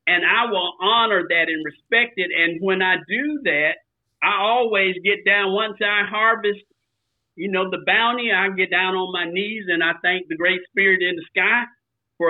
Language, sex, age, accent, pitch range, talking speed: English, male, 50-69, American, 180-225 Hz, 195 wpm